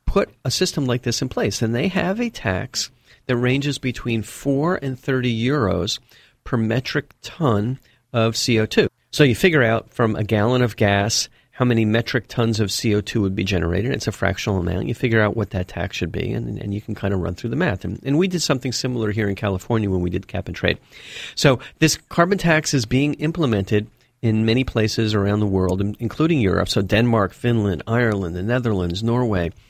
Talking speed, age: 205 wpm, 40-59